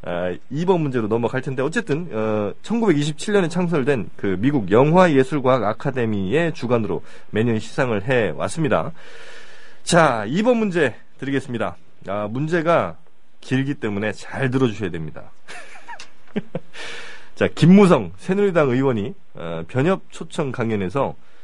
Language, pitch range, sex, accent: Korean, 110-160 Hz, male, native